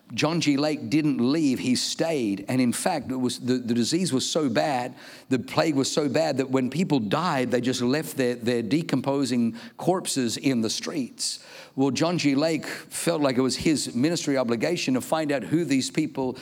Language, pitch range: English, 130-160 Hz